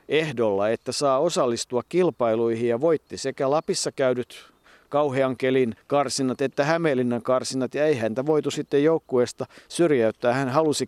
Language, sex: Finnish, male